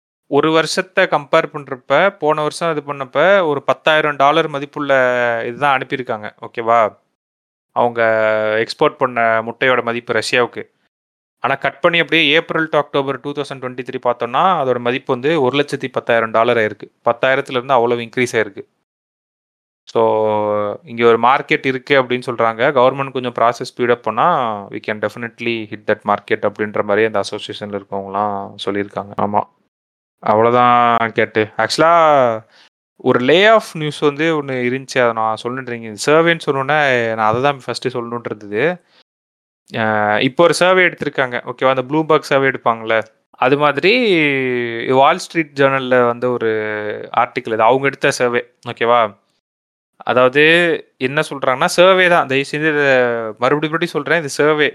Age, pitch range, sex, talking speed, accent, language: 30-49, 115-145 Hz, male, 135 wpm, native, Tamil